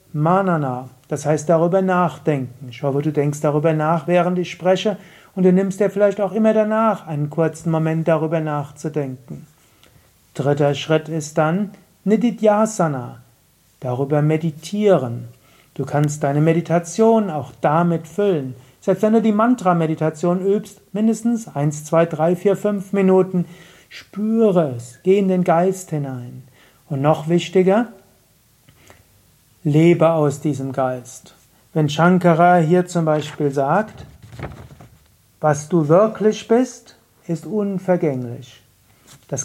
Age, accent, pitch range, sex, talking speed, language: 40-59, German, 145-195 Hz, male, 125 wpm, German